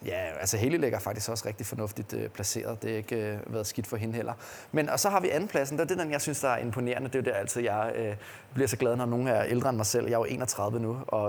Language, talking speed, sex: Danish, 290 wpm, male